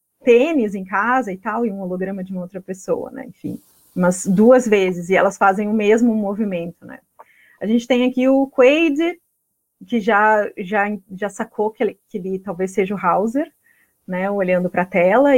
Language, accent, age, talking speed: Portuguese, Brazilian, 30-49, 185 wpm